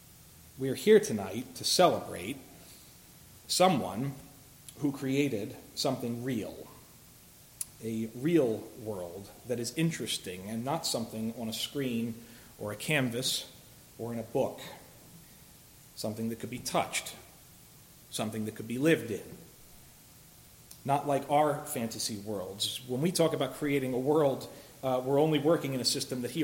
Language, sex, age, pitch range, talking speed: English, male, 40-59, 115-150 Hz, 140 wpm